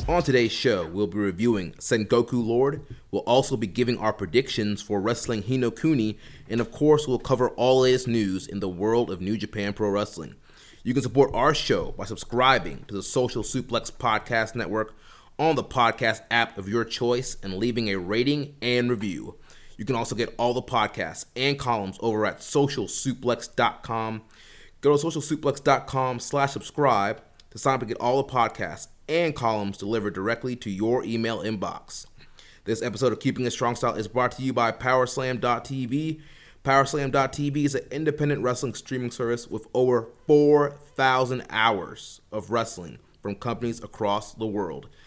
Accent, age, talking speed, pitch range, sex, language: American, 30-49, 165 wpm, 110-130 Hz, male, English